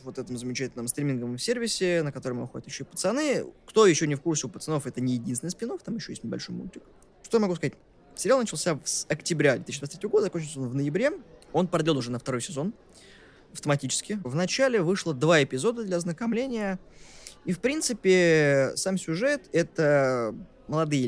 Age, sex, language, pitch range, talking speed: 20-39, male, Russian, 130-180 Hz, 180 wpm